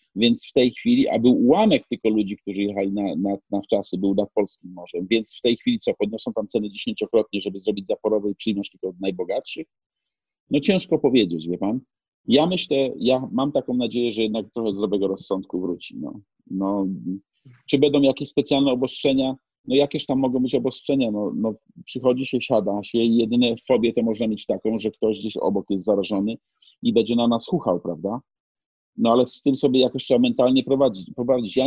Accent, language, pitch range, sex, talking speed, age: native, Polish, 100-125 Hz, male, 190 wpm, 40-59